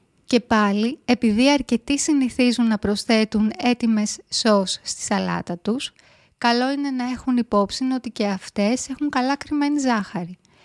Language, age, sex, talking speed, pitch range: Greek, 20-39, female, 135 wpm, 205-265 Hz